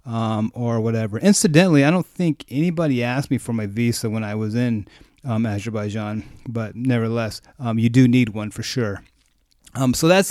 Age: 30-49